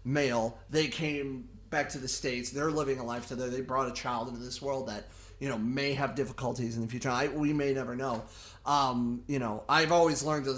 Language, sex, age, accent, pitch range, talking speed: English, male, 30-49, American, 120-145 Hz, 225 wpm